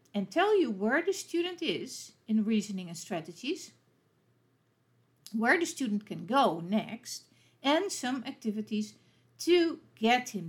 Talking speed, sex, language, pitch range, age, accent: 130 wpm, female, English, 195-285 Hz, 60-79, Dutch